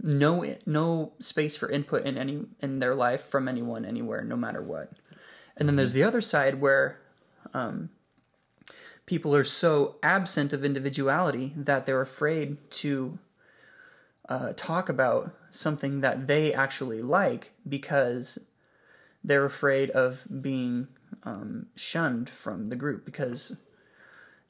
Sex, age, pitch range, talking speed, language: male, 20-39, 130-150 Hz, 130 wpm, English